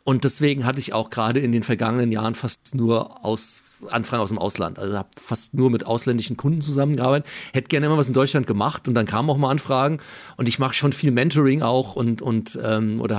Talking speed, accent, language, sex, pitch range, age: 225 wpm, German, German, male, 115-135 Hz, 40-59